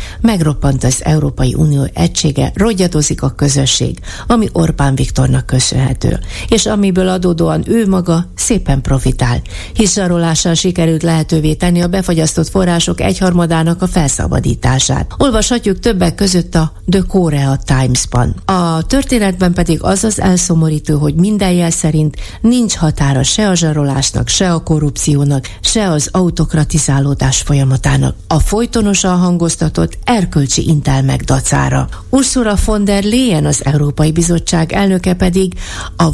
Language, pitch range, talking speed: Hungarian, 135-185 Hz, 125 wpm